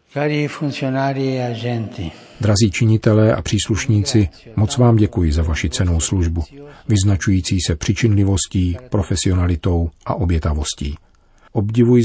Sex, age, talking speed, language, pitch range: male, 40-59, 90 wpm, Czech, 85-115 Hz